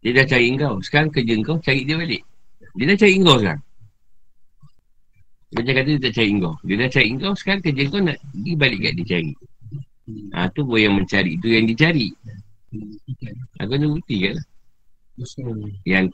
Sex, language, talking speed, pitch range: male, Malay, 180 wpm, 100-135 Hz